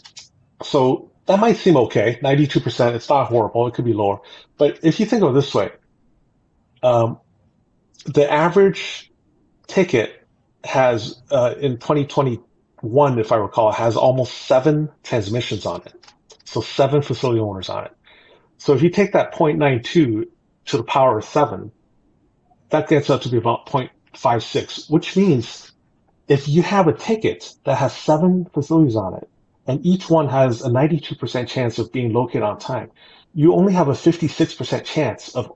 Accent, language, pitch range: American, English, 120-155 Hz